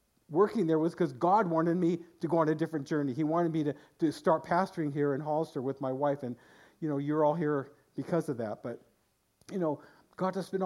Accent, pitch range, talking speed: American, 145-175 Hz, 230 wpm